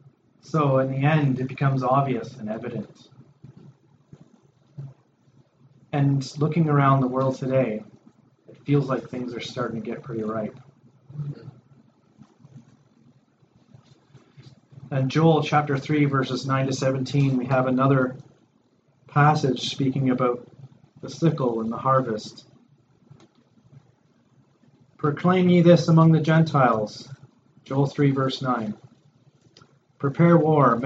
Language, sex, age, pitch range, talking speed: English, male, 30-49, 130-150 Hz, 110 wpm